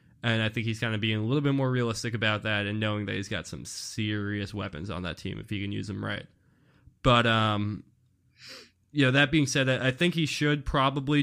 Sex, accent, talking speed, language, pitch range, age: male, American, 225 wpm, English, 100-125 Hz, 20-39